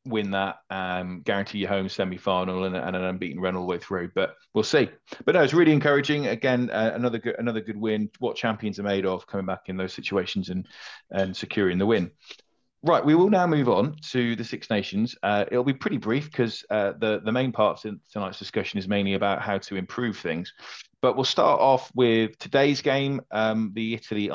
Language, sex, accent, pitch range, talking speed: English, male, British, 95-115 Hz, 210 wpm